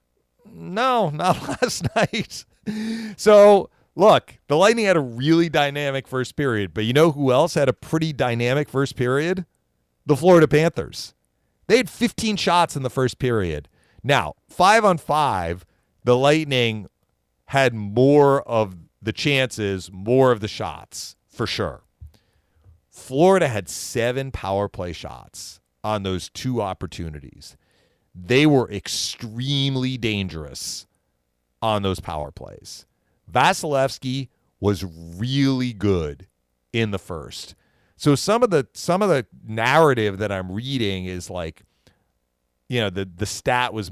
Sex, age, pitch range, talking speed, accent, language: male, 40-59, 90-145 Hz, 135 wpm, American, English